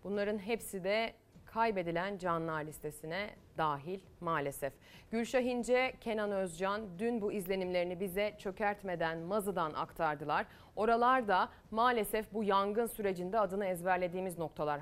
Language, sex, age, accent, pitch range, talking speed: Turkish, female, 30-49, native, 190-230 Hz, 110 wpm